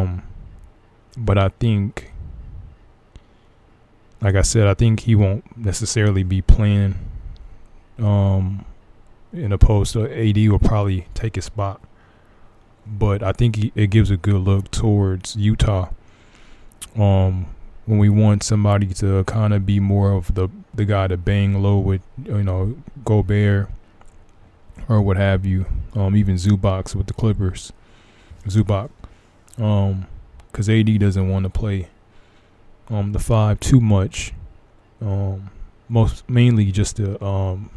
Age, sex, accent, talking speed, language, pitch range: 20-39, male, American, 130 wpm, English, 95-110 Hz